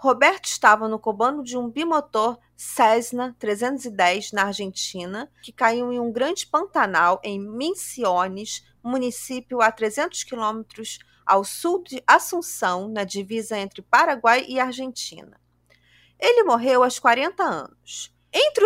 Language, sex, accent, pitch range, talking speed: Portuguese, female, Brazilian, 205-285 Hz, 125 wpm